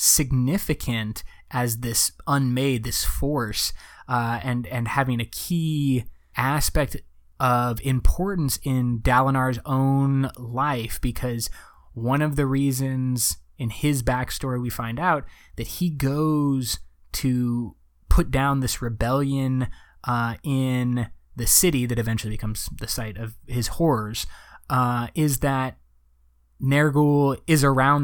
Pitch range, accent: 120-145 Hz, American